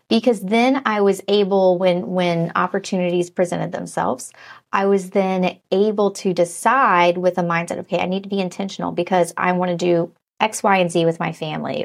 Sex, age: female, 30-49